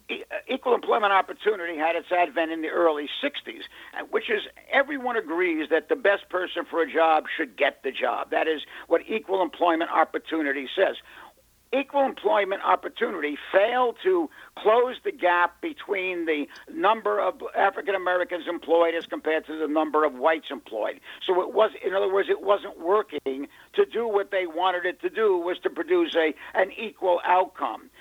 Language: English